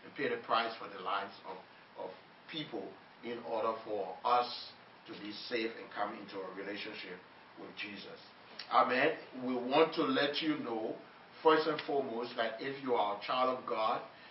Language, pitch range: English, 115-135 Hz